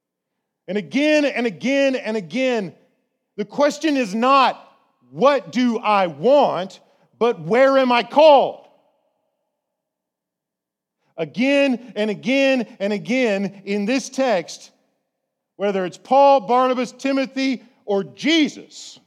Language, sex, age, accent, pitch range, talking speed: English, male, 40-59, American, 165-255 Hz, 105 wpm